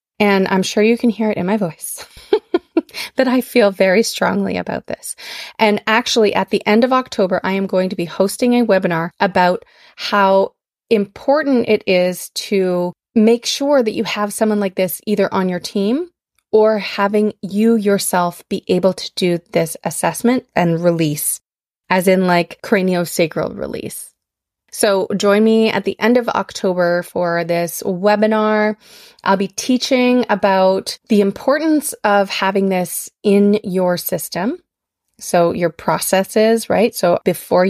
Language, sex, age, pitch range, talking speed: English, female, 20-39, 185-220 Hz, 155 wpm